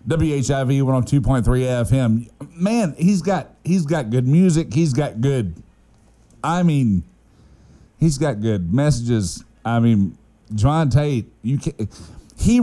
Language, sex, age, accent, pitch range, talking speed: English, male, 50-69, American, 110-155 Hz, 145 wpm